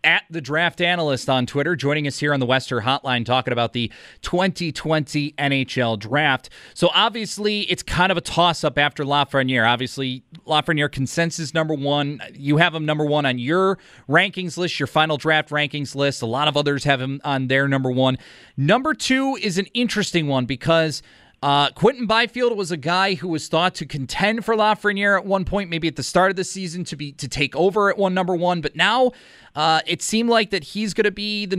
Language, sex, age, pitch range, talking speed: English, male, 30-49, 145-200 Hz, 205 wpm